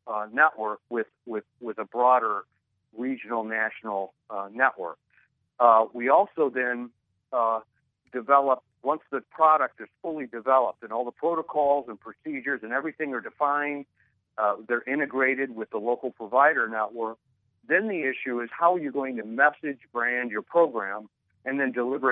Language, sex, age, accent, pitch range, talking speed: English, male, 50-69, American, 110-135 Hz, 155 wpm